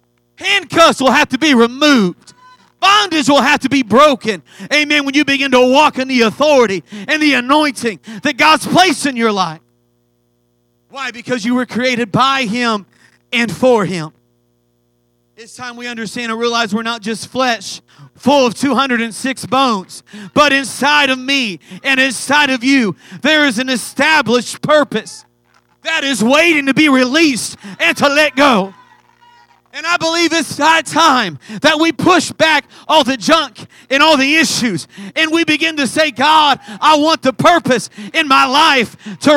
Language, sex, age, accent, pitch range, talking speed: English, male, 40-59, American, 205-300 Hz, 165 wpm